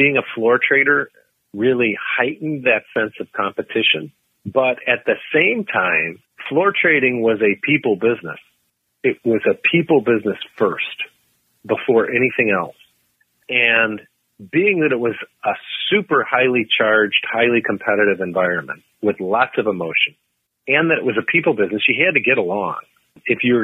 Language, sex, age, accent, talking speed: English, male, 40-59, American, 155 wpm